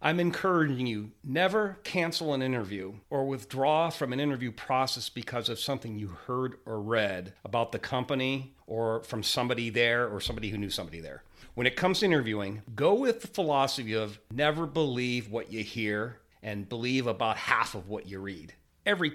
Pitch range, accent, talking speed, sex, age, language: 105-145 Hz, American, 180 wpm, male, 40-59, English